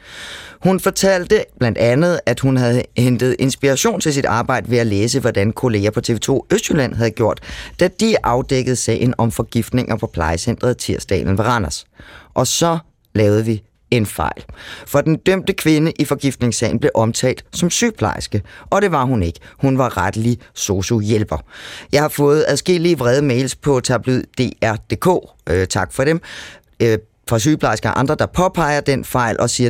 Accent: native